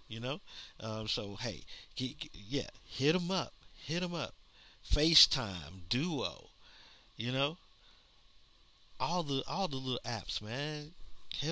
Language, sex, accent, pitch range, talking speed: English, male, American, 110-155 Hz, 135 wpm